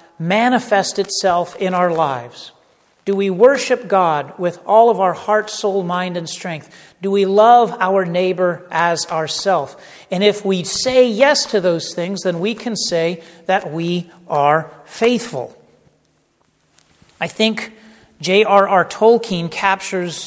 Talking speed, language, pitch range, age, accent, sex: 135 wpm, English, 180-220 Hz, 40-59, American, male